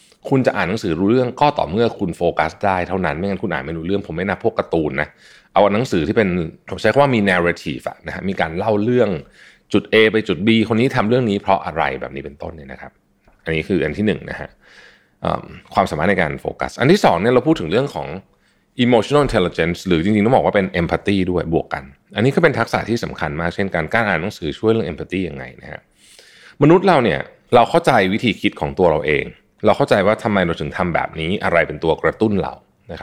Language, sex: Thai, male